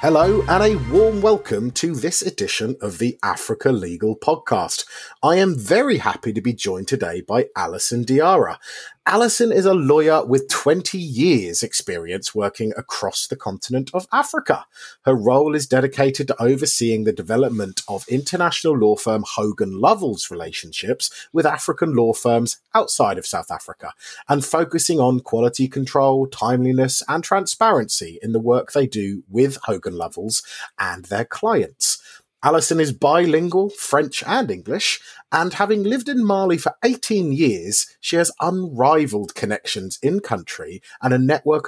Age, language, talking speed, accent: 30-49, English, 150 wpm, British